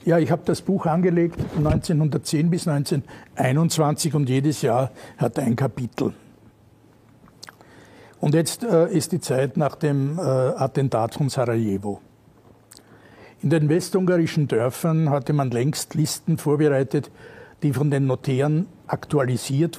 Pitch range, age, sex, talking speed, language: 130-155 Hz, 60-79, male, 130 wpm, Croatian